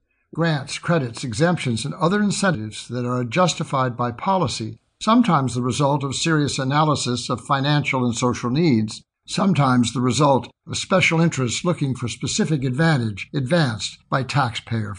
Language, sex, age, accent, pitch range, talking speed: English, male, 60-79, American, 125-160 Hz, 140 wpm